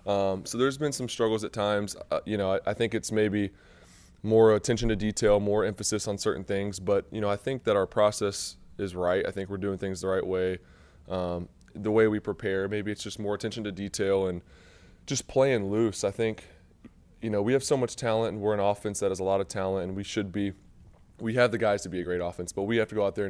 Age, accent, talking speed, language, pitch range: 20-39, American, 250 wpm, English, 90-105 Hz